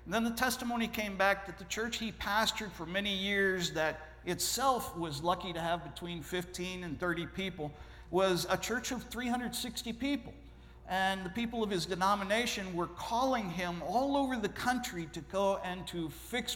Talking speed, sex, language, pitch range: 180 wpm, male, Italian, 180-240 Hz